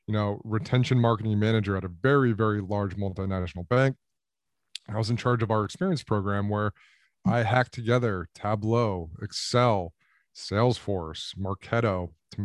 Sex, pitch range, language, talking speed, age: male, 105-135 Hz, English, 140 wpm, 20-39